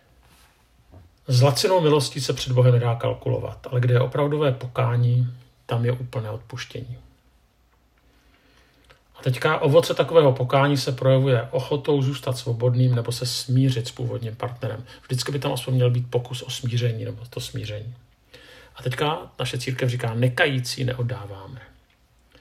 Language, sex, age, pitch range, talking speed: Czech, male, 50-69, 120-130 Hz, 135 wpm